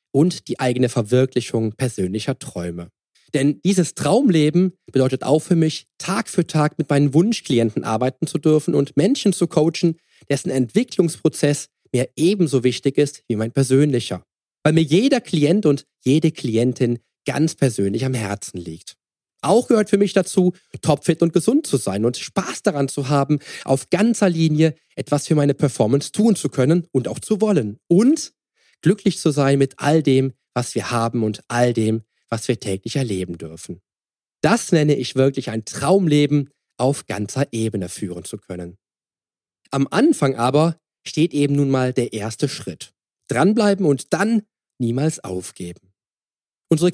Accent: German